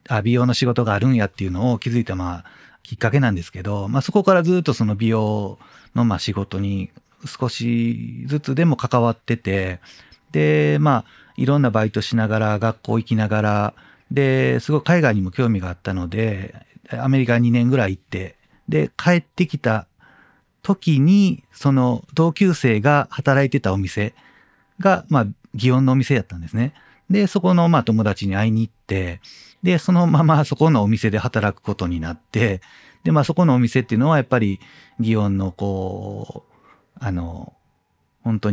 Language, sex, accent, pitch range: Japanese, male, native, 100-140 Hz